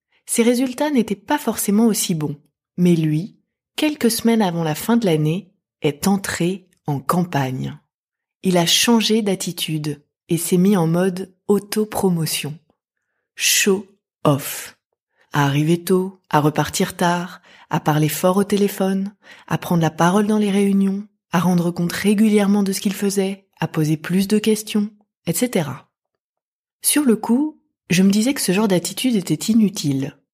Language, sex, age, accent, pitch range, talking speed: French, female, 20-39, French, 160-210 Hz, 150 wpm